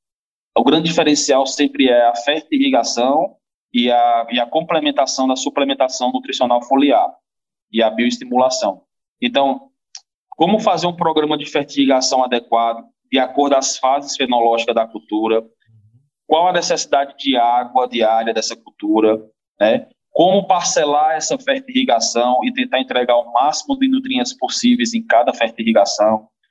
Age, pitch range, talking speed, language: 20-39, 120-185 Hz, 130 wpm, Portuguese